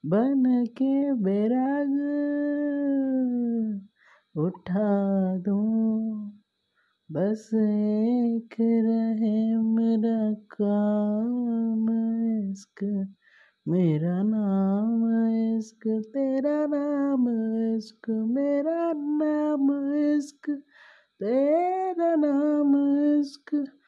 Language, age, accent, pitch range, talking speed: Hindi, 30-49, native, 180-280 Hz, 55 wpm